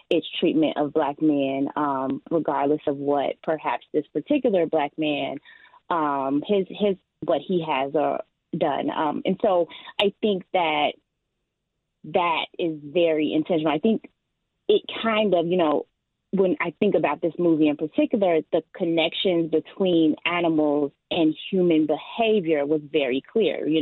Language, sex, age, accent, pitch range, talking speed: English, female, 20-39, American, 150-175 Hz, 145 wpm